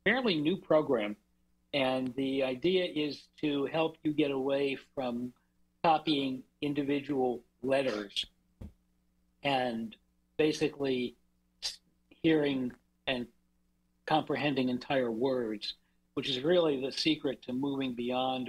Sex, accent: male, American